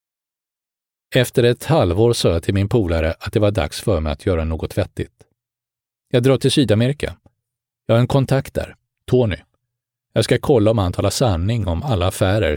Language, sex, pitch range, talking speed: English, male, 95-120 Hz, 180 wpm